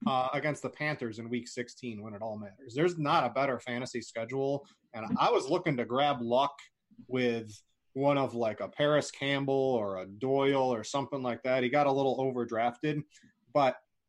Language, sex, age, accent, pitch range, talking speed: English, male, 30-49, American, 120-145 Hz, 190 wpm